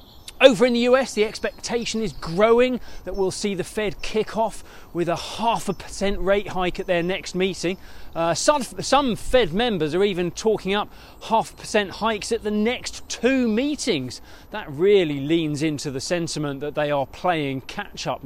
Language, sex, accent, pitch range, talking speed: English, male, British, 160-215 Hz, 175 wpm